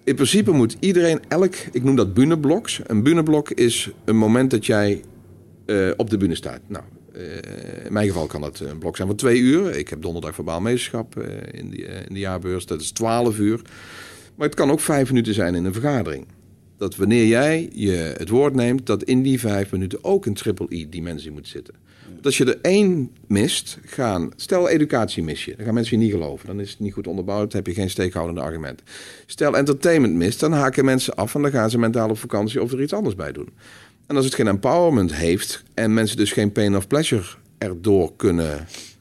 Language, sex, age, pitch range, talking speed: Dutch, male, 40-59, 95-135 Hz, 210 wpm